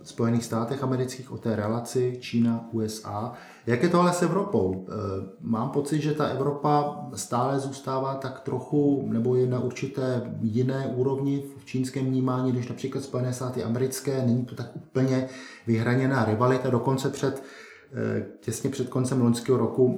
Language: Czech